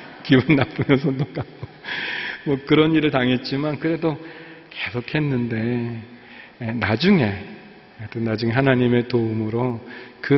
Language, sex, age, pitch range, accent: Korean, male, 40-59, 115-145 Hz, native